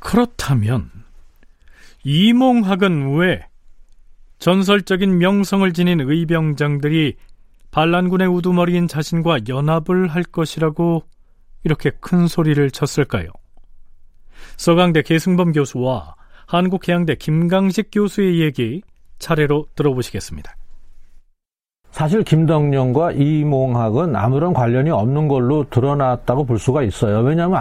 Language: Korean